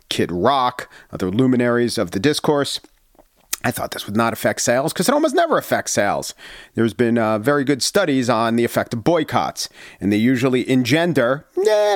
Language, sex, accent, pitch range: English, male, American, 115-150 Hz